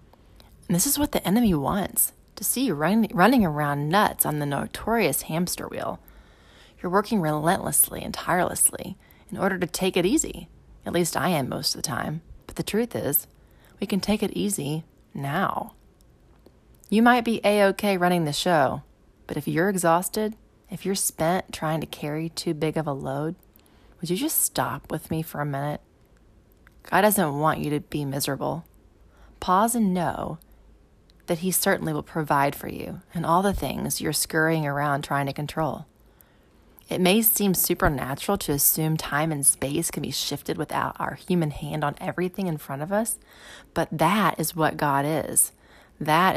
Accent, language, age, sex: American, English, 30-49, female